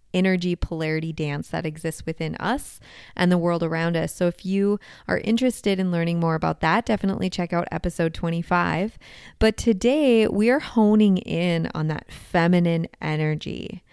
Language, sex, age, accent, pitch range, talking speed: English, female, 20-39, American, 170-220 Hz, 160 wpm